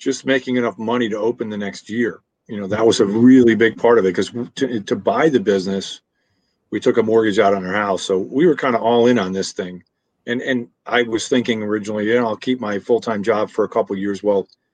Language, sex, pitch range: English, male, 105-125 Hz